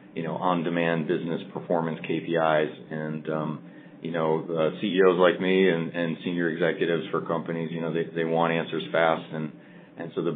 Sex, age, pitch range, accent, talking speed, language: male, 40-59, 75-85 Hz, American, 180 wpm, English